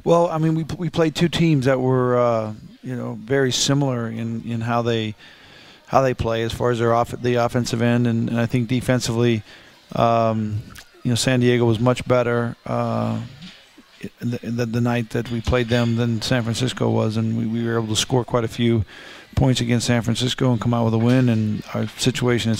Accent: American